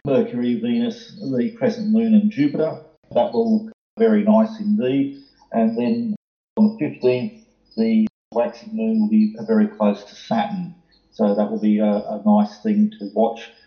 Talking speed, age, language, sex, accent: 165 wpm, 40-59, English, male, Australian